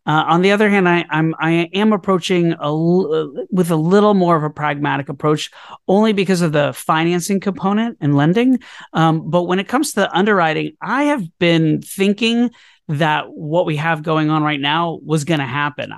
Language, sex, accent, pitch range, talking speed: English, male, American, 150-185 Hz, 190 wpm